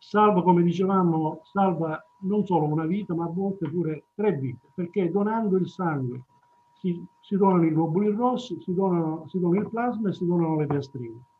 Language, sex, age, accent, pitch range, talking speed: Italian, male, 50-69, native, 160-205 Hz, 175 wpm